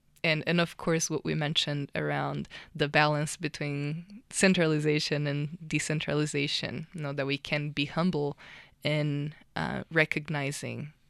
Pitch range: 145-170 Hz